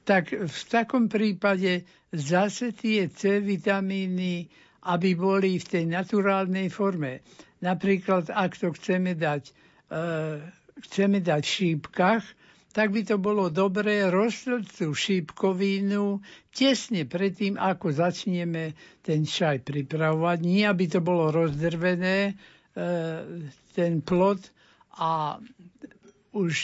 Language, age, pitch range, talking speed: Slovak, 60-79, 170-200 Hz, 110 wpm